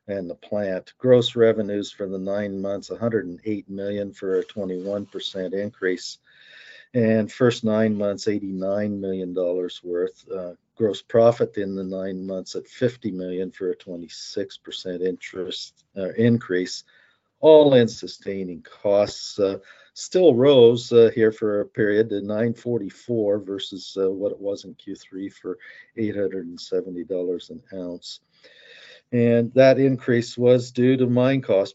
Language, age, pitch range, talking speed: English, 50-69, 95-115 Hz, 140 wpm